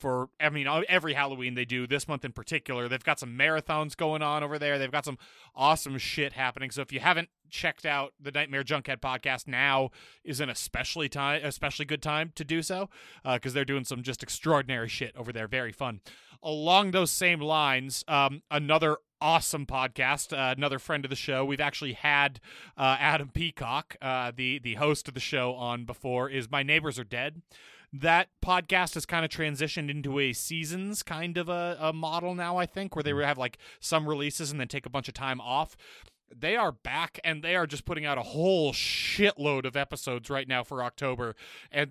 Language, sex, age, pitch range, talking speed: English, male, 30-49, 135-155 Hz, 210 wpm